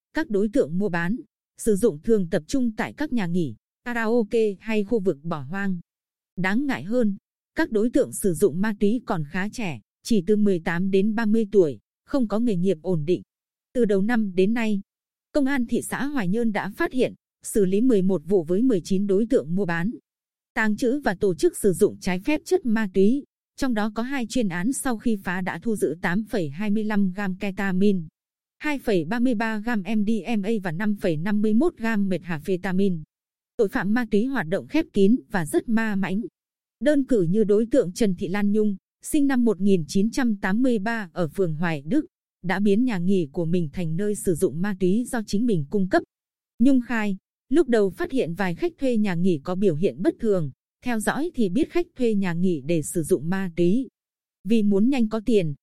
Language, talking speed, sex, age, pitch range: Vietnamese, 200 wpm, female, 20-39, 190-235 Hz